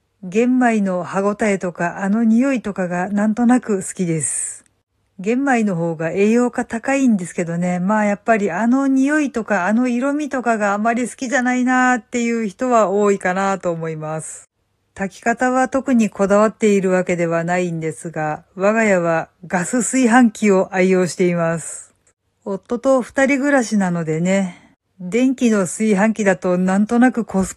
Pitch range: 180-240 Hz